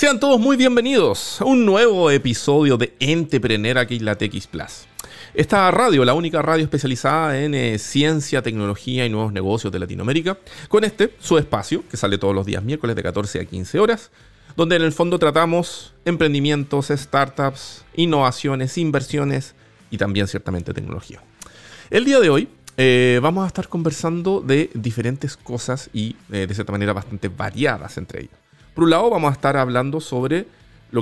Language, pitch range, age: Spanish, 100-145 Hz, 40-59